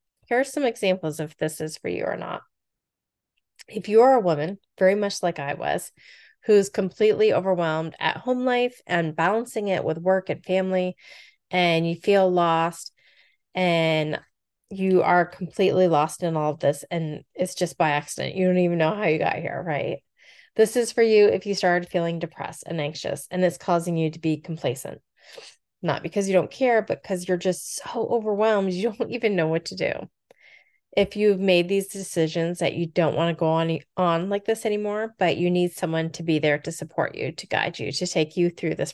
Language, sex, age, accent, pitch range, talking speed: English, female, 20-39, American, 165-200 Hz, 205 wpm